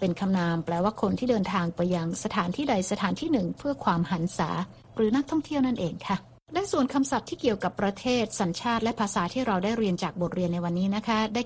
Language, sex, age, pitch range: Thai, female, 60-79, 175-215 Hz